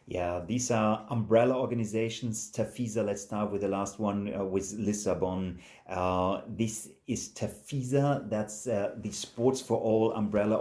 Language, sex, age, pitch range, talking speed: English, male, 30-49, 100-115 Hz, 145 wpm